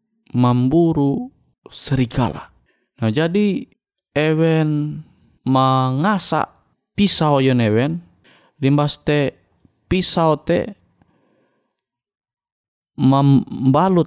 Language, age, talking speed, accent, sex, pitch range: Indonesian, 20-39, 55 wpm, native, male, 115-160 Hz